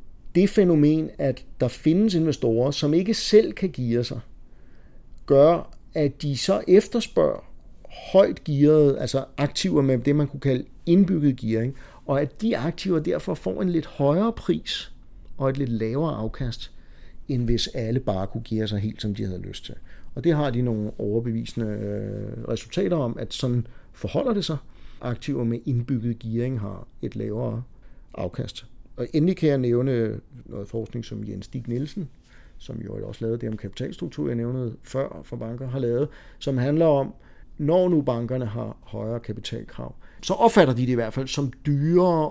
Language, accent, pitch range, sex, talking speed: Danish, native, 115-145 Hz, male, 170 wpm